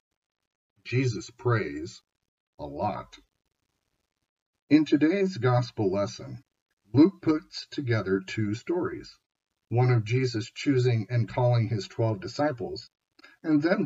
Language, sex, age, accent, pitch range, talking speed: English, male, 50-69, American, 110-140 Hz, 105 wpm